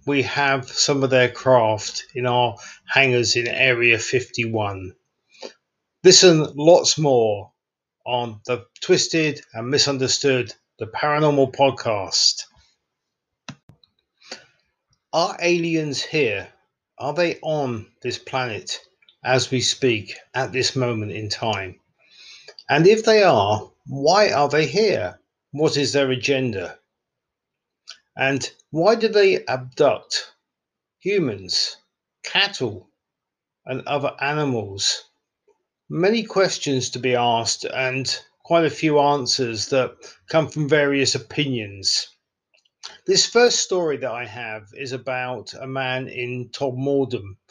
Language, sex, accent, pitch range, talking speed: English, male, British, 120-150 Hz, 110 wpm